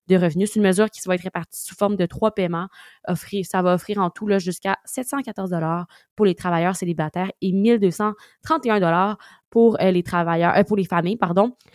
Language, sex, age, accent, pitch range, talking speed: French, female, 20-39, Canadian, 185-225 Hz, 190 wpm